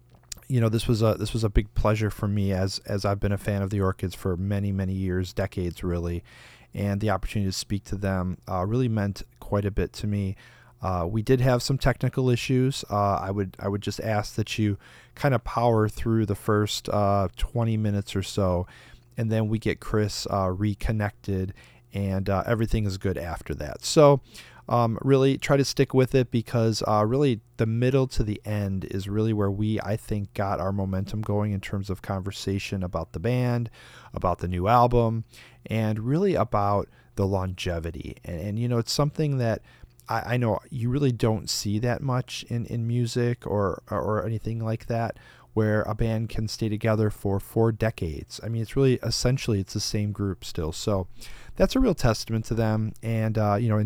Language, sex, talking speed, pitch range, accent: English, male, 200 wpm, 100-120 Hz, American